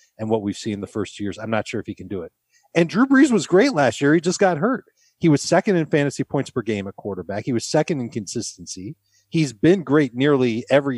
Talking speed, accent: 250 wpm, American